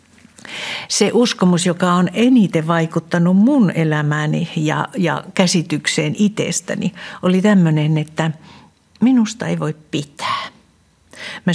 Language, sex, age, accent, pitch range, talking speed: Finnish, female, 60-79, native, 165-210 Hz, 105 wpm